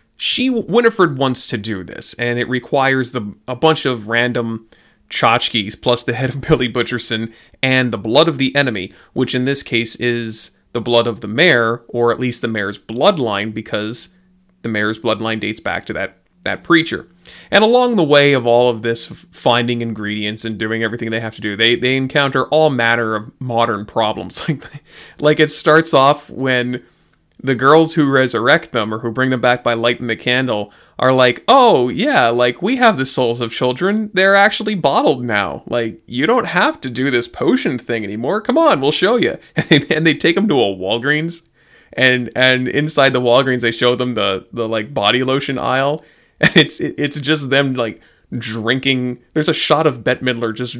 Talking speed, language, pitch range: 195 wpm, English, 115-140 Hz